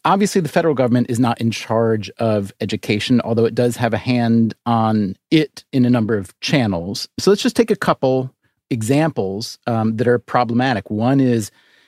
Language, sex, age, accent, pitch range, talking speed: English, male, 30-49, American, 115-155 Hz, 180 wpm